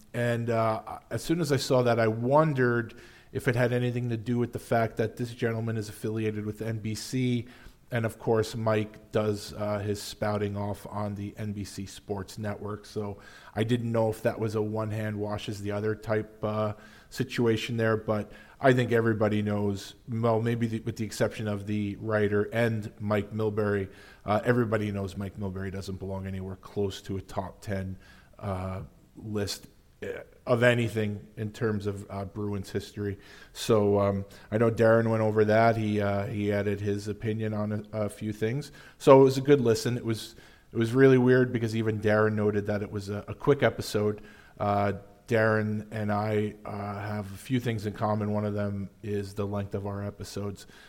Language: English